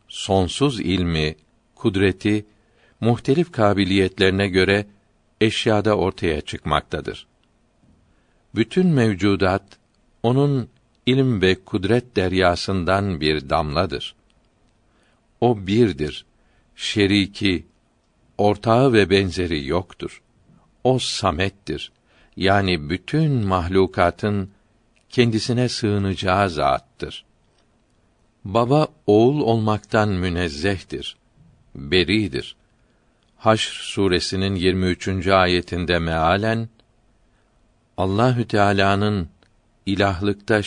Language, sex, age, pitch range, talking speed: Turkish, male, 60-79, 95-115 Hz, 70 wpm